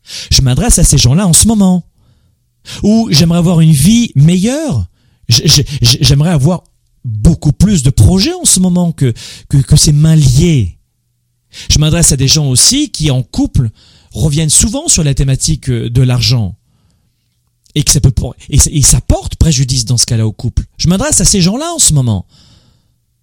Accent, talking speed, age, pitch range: French, 170 wpm, 40-59, 110-150 Hz